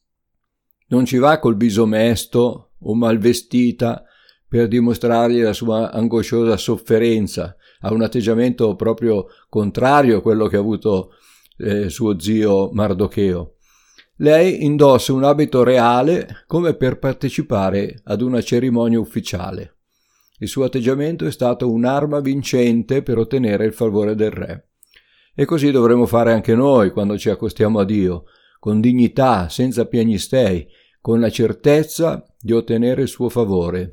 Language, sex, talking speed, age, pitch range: Italian, male, 135 wpm, 50-69, 105-130 Hz